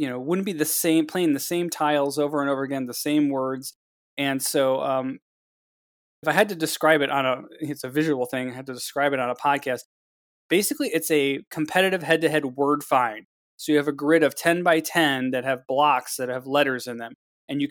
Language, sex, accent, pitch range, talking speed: English, male, American, 130-150 Hz, 225 wpm